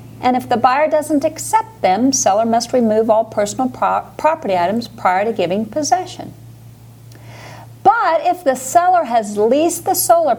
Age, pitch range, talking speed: 50-69, 160-250 Hz, 150 wpm